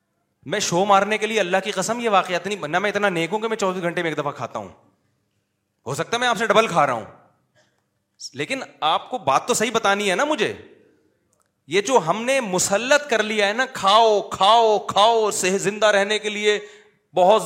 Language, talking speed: Urdu, 215 wpm